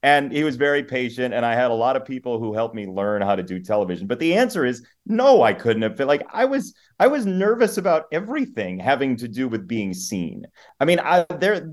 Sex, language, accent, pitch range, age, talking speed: male, English, American, 110-155 Hz, 30-49, 235 wpm